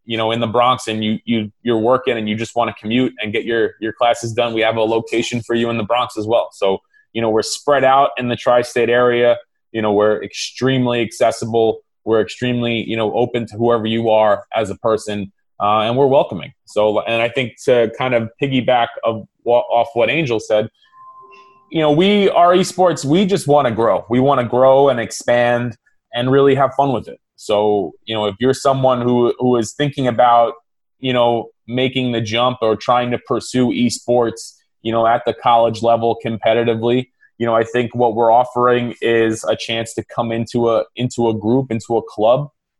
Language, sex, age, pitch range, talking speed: English, male, 20-39, 115-125 Hz, 205 wpm